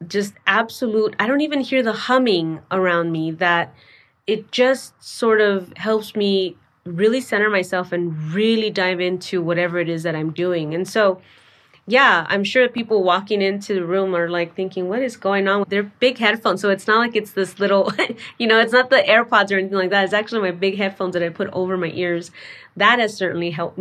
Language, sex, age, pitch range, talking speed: English, female, 20-39, 180-215 Hz, 210 wpm